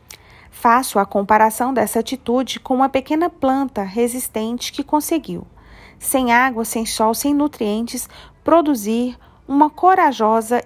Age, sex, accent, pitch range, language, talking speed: 40-59, female, Brazilian, 210-280 Hz, Portuguese, 120 wpm